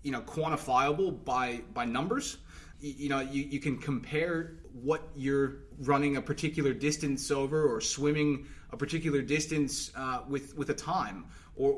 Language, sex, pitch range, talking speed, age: English, male, 130-160 Hz, 155 wpm, 20-39